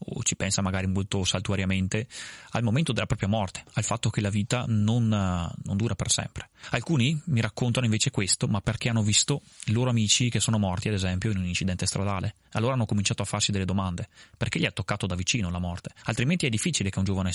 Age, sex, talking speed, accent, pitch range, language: 20-39, male, 220 wpm, native, 95-115 Hz, Italian